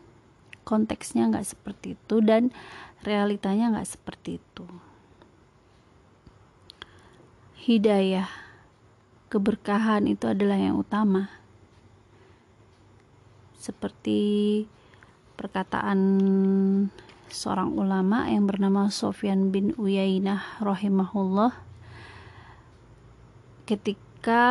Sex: female